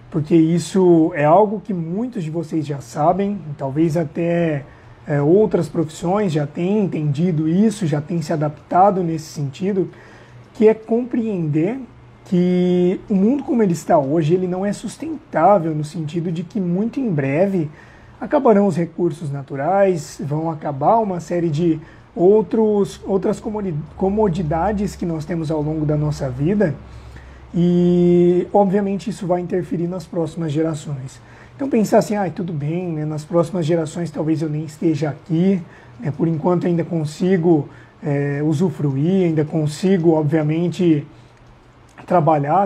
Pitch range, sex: 150-185 Hz, male